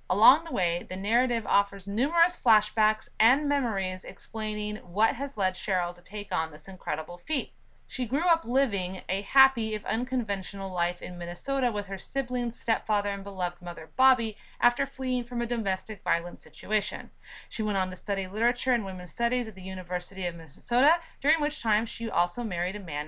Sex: female